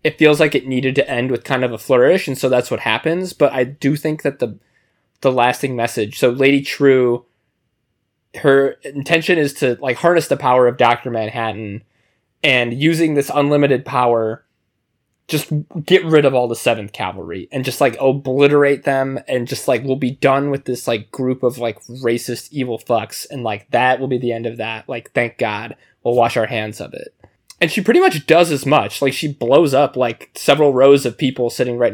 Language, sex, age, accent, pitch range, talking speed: English, male, 20-39, American, 115-140 Hz, 205 wpm